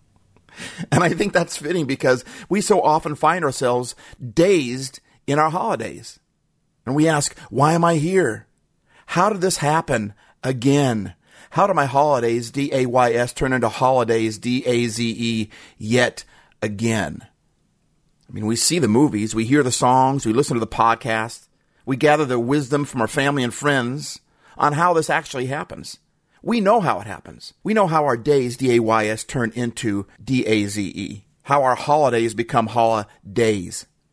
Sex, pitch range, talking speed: male, 115-155 Hz, 150 wpm